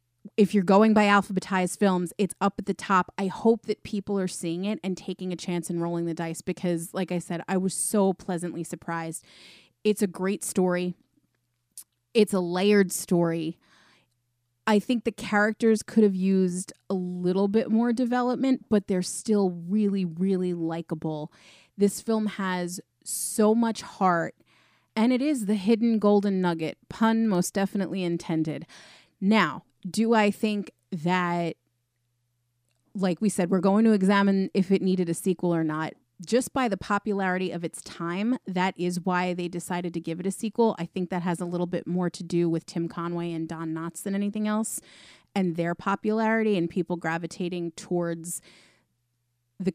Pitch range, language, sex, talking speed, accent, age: 170-205 Hz, English, female, 170 wpm, American, 30-49